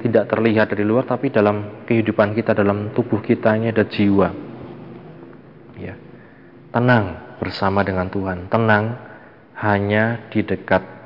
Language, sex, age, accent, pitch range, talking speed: Indonesian, male, 20-39, native, 95-115 Hz, 125 wpm